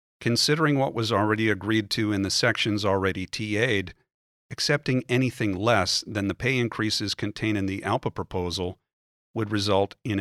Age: 50-69